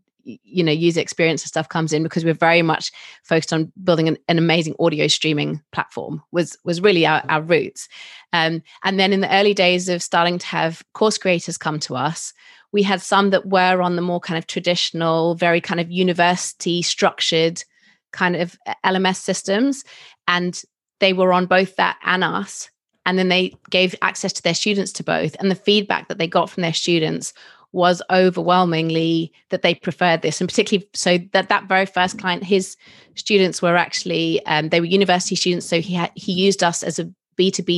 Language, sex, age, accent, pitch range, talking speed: English, female, 30-49, British, 165-190 Hz, 195 wpm